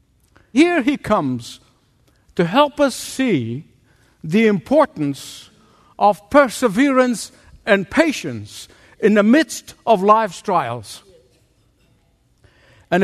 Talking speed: 90 wpm